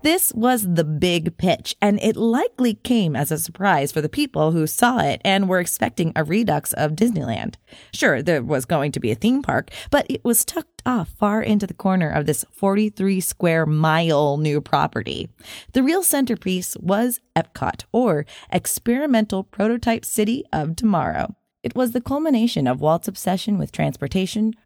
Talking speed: 165 wpm